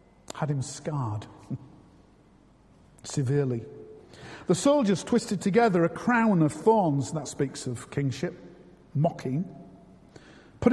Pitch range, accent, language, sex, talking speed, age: 180-250 Hz, British, English, male, 100 wpm, 50-69